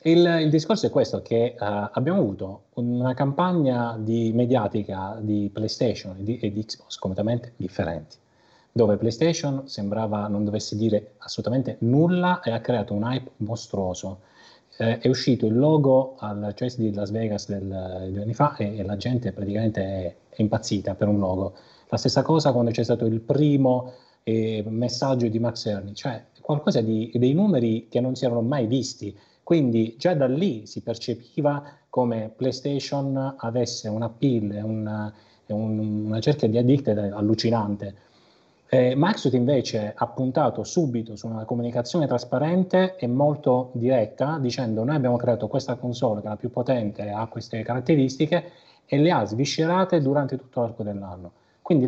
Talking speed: 155 wpm